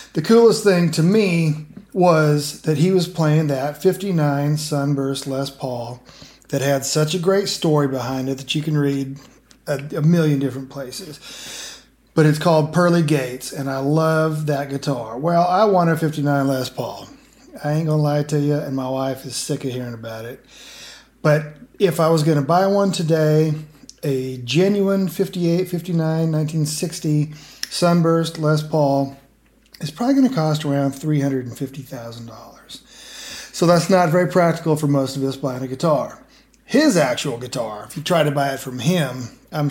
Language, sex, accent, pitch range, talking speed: English, male, American, 135-170 Hz, 165 wpm